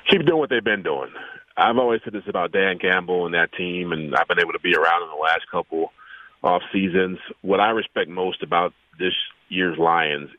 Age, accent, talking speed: 40-59, American, 215 wpm